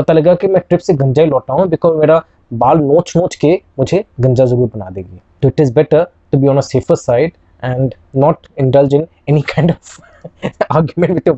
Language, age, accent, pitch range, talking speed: Hindi, 20-39, native, 125-160 Hz, 55 wpm